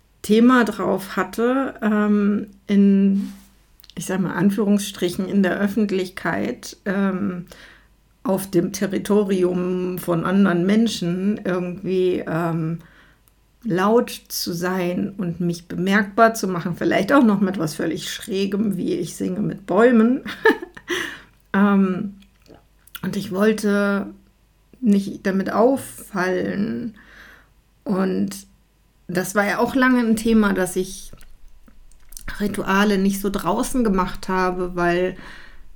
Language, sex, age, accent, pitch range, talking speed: German, female, 50-69, German, 185-215 Hz, 110 wpm